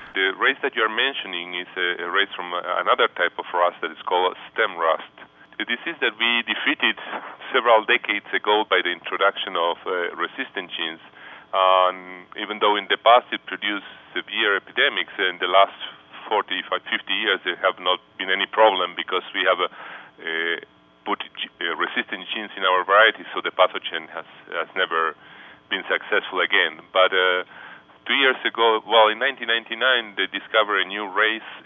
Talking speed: 165 wpm